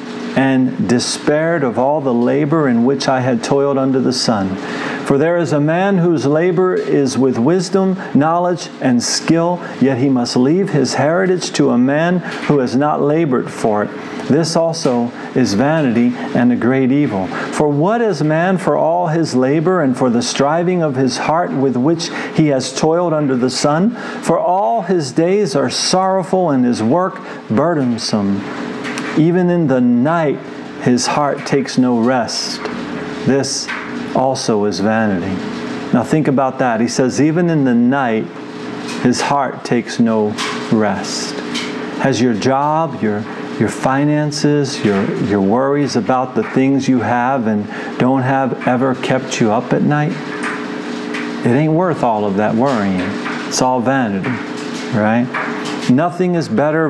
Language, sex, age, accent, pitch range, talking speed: English, male, 50-69, American, 125-160 Hz, 155 wpm